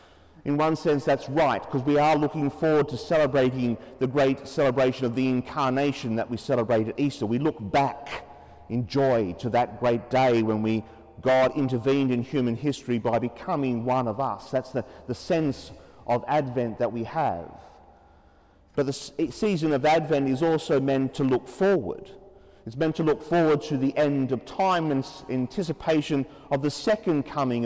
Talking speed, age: 175 wpm, 40-59